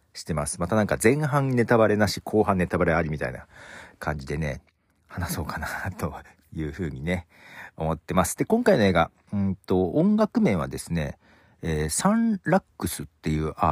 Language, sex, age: Japanese, male, 40-59